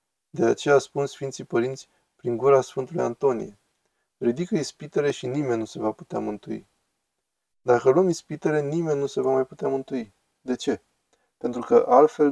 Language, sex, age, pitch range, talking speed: Romanian, male, 20-39, 130-215 Hz, 160 wpm